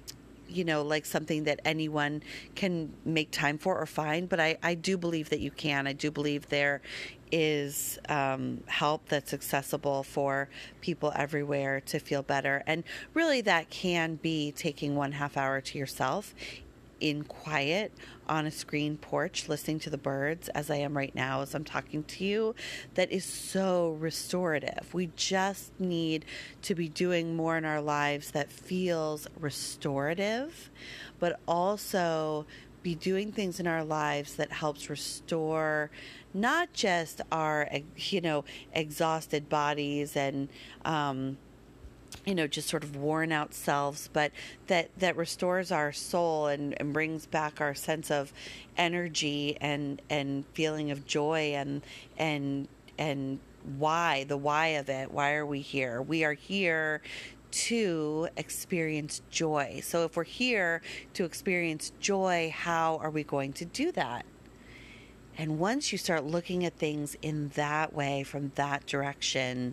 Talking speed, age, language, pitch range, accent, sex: 150 wpm, 30-49, English, 140-165 Hz, American, female